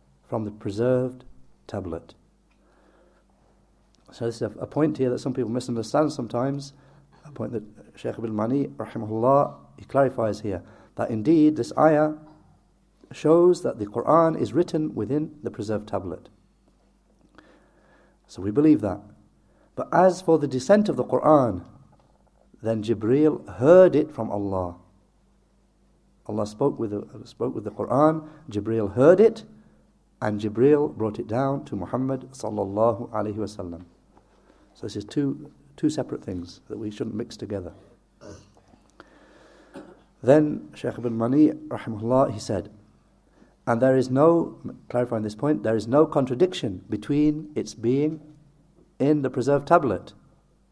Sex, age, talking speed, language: male, 60-79, 135 wpm, English